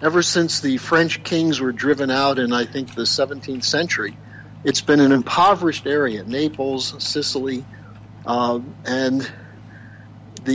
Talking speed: 135 wpm